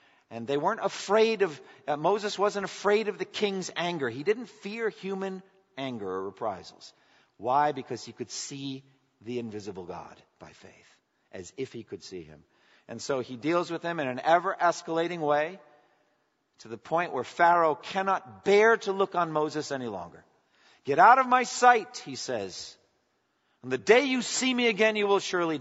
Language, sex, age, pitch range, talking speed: English, male, 50-69, 120-185 Hz, 180 wpm